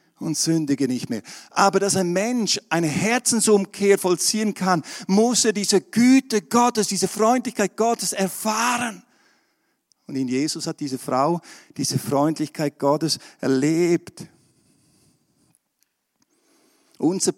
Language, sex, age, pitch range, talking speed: German, male, 50-69, 140-195 Hz, 110 wpm